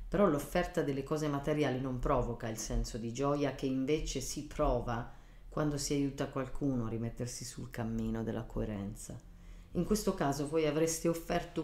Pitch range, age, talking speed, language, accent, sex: 120-155 Hz, 40-59, 160 wpm, Italian, native, female